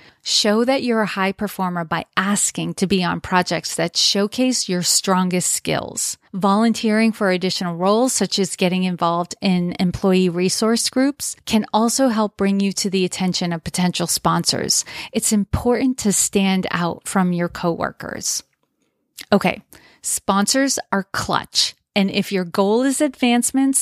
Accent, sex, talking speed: American, female, 145 wpm